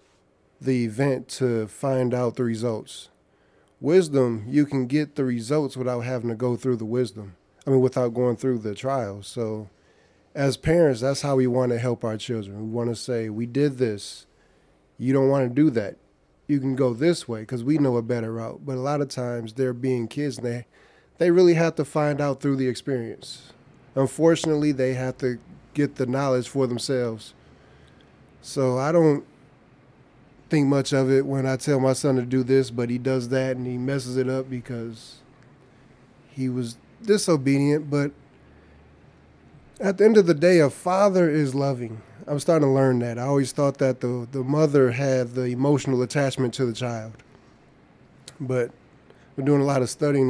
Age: 30-49